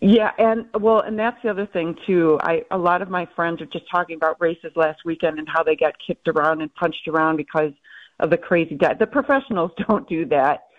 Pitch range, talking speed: 160-195 Hz, 230 wpm